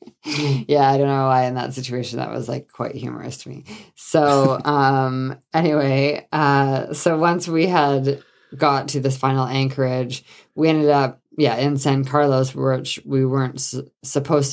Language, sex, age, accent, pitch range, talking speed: English, female, 20-39, American, 125-150 Hz, 160 wpm